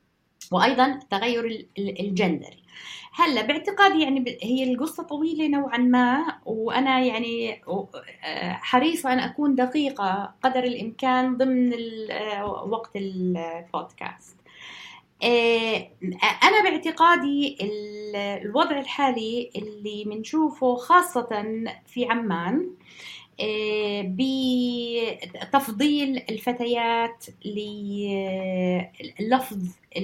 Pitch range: 205-275 Hz